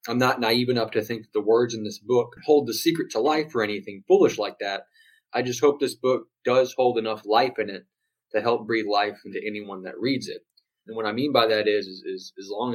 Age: 20-39